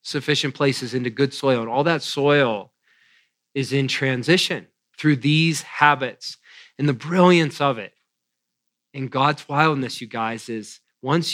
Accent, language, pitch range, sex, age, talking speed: American, English, 125-150 Hz, male, 40-59, 145 wpm